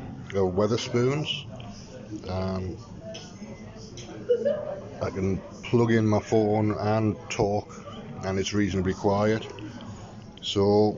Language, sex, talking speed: English, male, 75 wpm